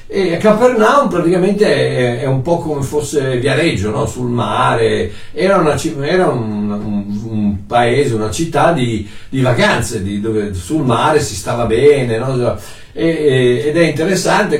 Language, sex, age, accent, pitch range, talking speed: Italian, male, 60-79, native, 110-165 Hz, 155 wpm